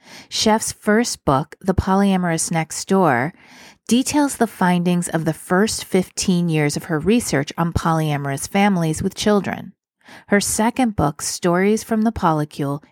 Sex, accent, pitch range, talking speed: female, American, 160-205 Hz, 140 wpm